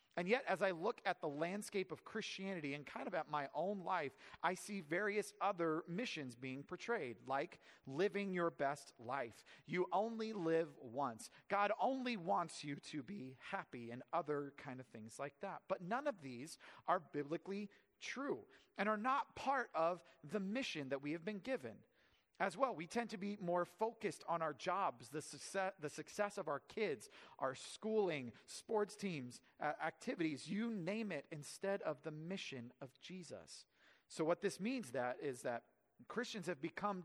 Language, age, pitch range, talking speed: English, 40-59, 145-200 Hz, 175 wpm